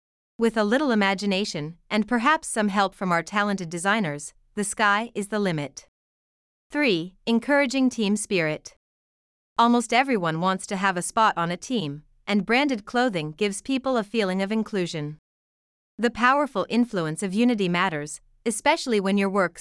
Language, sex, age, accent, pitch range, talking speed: English, female, 30-49, American, 175-235 Hz, 155 wpm